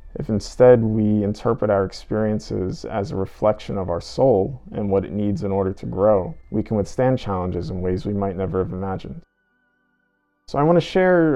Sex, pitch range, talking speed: male, 100-120 Hz, 190 wpm